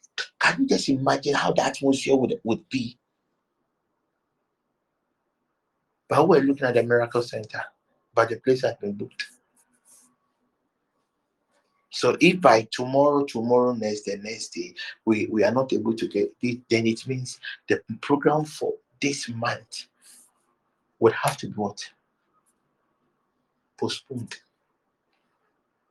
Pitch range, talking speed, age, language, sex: 120-175 Hz, 125 wpm, 50-69, English, male